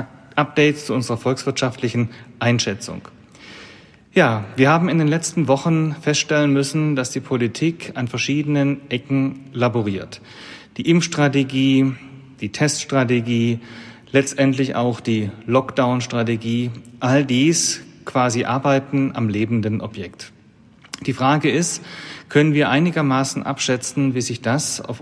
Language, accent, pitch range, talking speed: German, German, 115-140 Hz, 115 wpm